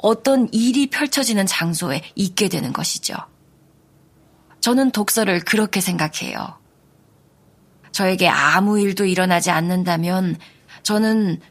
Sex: female